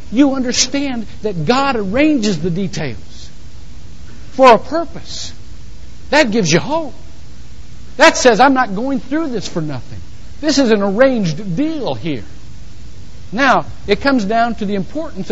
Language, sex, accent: English, male, American